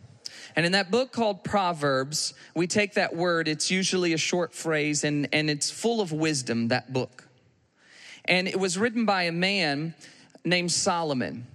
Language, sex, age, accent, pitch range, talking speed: English, male, 40-59, American, 145-190 Hz, 165 wpm